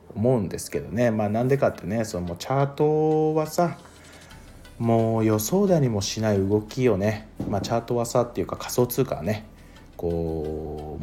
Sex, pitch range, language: male, 85-125 Hz, Japanese